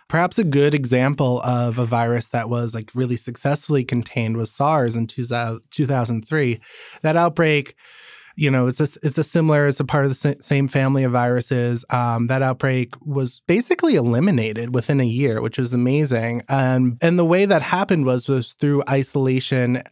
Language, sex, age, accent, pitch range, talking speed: English, male, 20-39, American, 125-155 Hz, 175 wpm